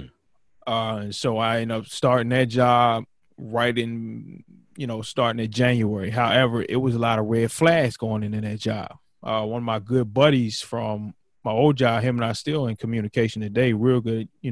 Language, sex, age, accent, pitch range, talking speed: English, male, 20-39, American, 110-130 Hz, 200 wpm